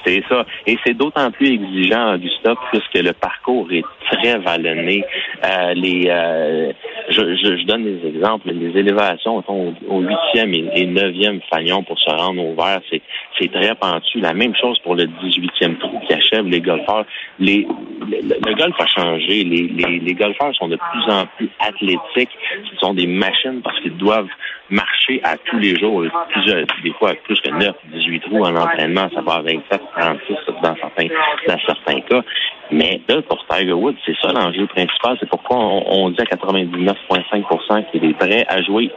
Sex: male